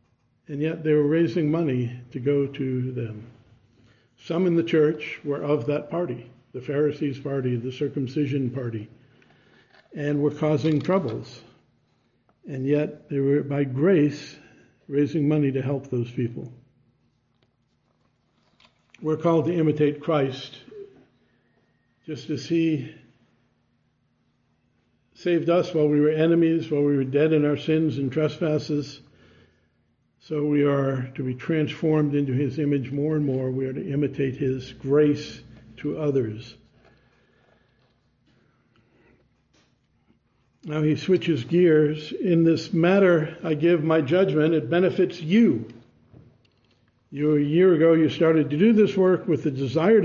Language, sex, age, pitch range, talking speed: English, male, 60-79, 130-160 Hz, 130 wpm